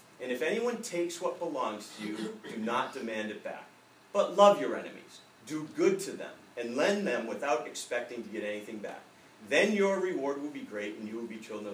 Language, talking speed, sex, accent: English, 210 wpm, male, American